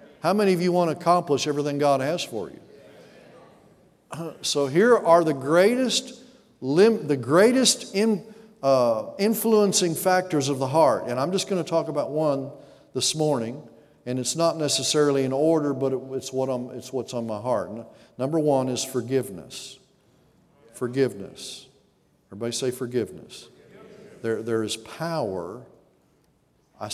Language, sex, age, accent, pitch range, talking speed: English, male, 50-69, American, 120-165 Hz, 145 wpm